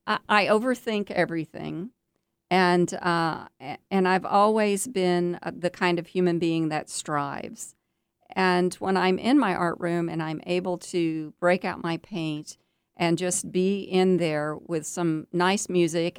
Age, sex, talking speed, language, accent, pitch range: 50-69, female, 145 wpm, English, American, 160-185 Hz